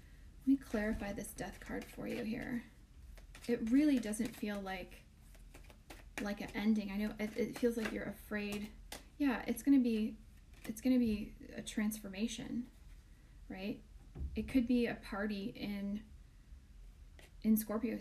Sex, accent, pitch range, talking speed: female, American, 195-230 Hz, 150 wpm